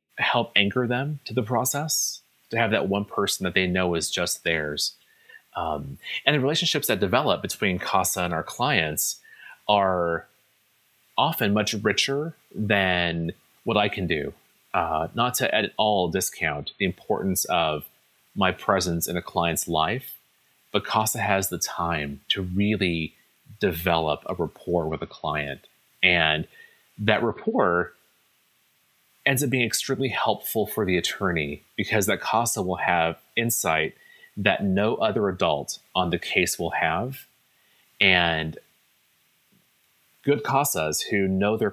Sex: male